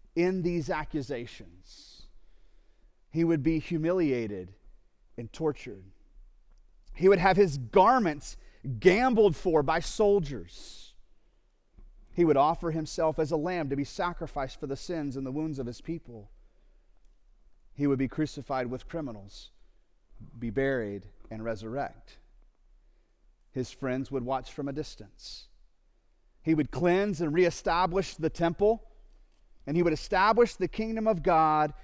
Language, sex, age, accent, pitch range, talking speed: English, male, 40-59, American, 130-180 Hz, 130 wpm